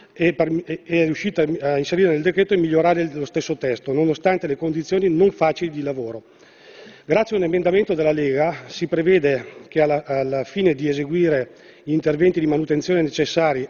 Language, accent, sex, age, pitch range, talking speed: Italian, native, male, 40-59, 150-185 Hz, 160 wpm